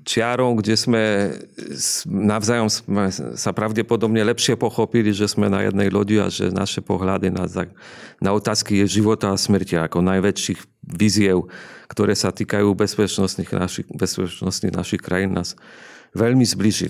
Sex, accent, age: male, Polish, 40-59